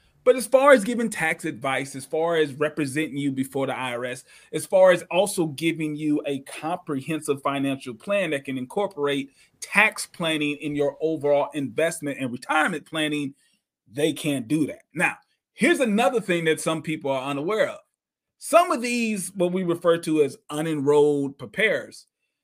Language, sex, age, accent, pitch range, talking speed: English, male, 30-49, American, 140-200 Hz, 165 wpm